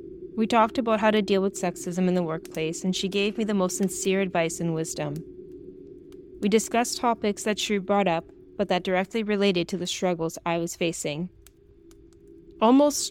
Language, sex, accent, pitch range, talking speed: English, female, American, 180-255 Hz, 180 wpm